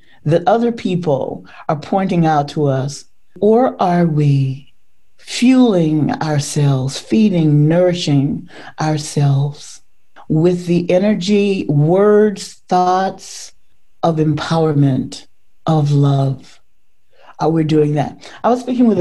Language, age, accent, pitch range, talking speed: English, 40-59, American, 140-180 Hz, 100 wpm